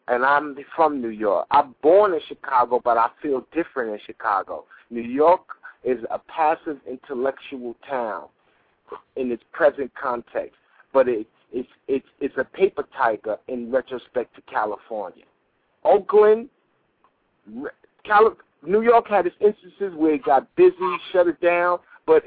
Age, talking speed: 50-69, 135 wpm